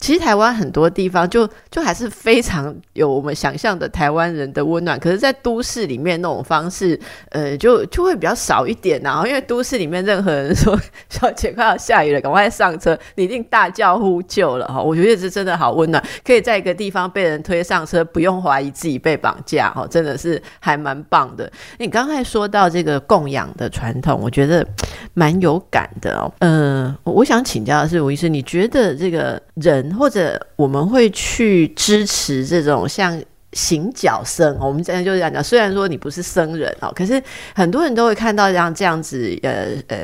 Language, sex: Chinese, female